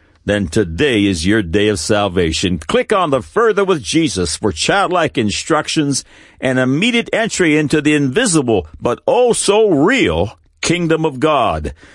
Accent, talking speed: American, 140 wpm